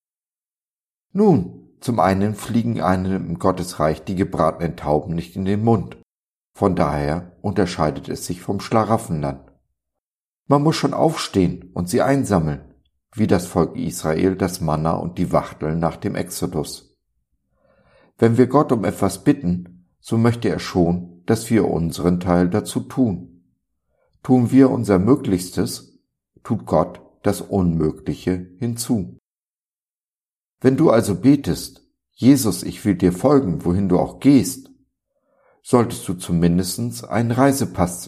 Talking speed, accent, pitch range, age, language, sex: 130 wpm, German, 80-115 Hz, 50-69, German, male